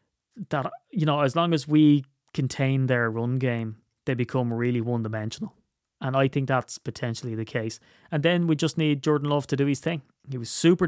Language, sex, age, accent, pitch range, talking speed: English, male, 20-39, Irish, 120-145 Hz, 205 wpm